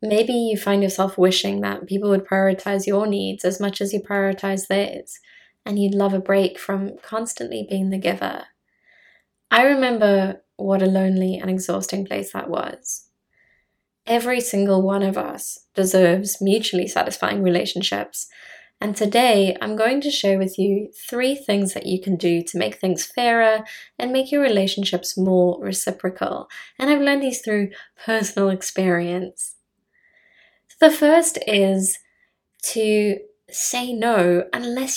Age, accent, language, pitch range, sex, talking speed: 20-39, British, English, 185-220 Hz, female, 145 wpm